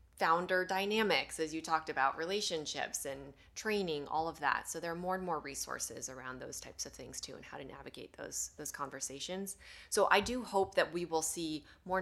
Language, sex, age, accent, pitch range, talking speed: English, female, 20-39, American, 150-185 Hz, 205 wpm